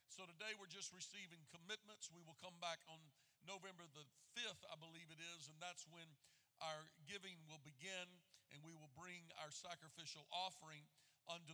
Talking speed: 170 wpm